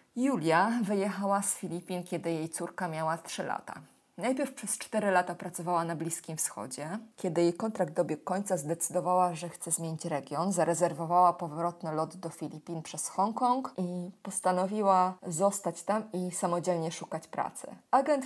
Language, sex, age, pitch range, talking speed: Polish, female, 20-39, 165-190 Hz, 145 wpm